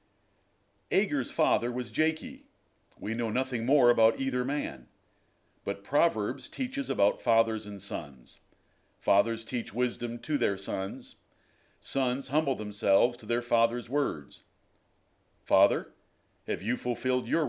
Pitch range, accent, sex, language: 100-135 Hz, American, male, English